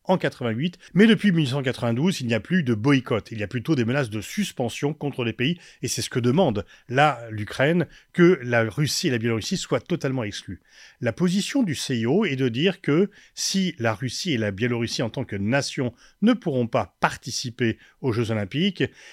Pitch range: 120-170 Hz